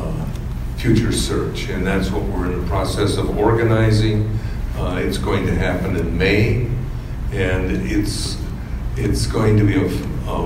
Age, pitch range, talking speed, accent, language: 60-79, 90-110 Hz, 155 wpm, American, English